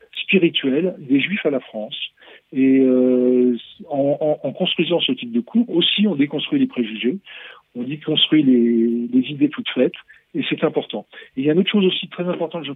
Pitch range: 125-195 Hz